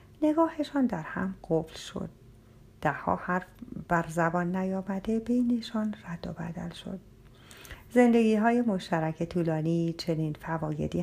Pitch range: 160-215 Hz